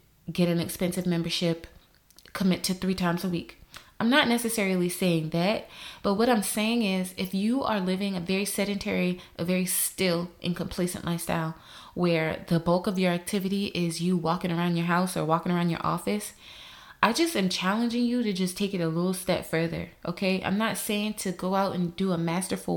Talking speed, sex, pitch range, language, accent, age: 195 wpm, female, 165-200 Hz, English, American, 20-39